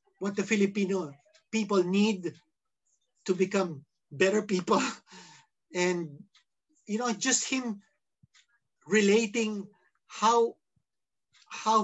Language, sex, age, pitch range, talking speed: Filipino, male, 50-69, 170-220 Hz, 85 wpm